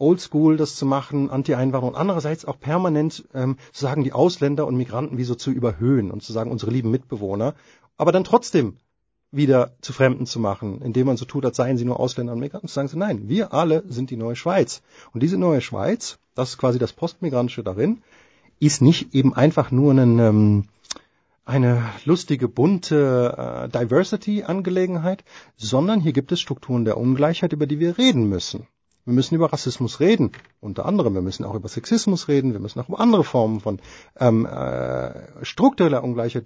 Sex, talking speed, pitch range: male, 190 wpm, 120-160 Hz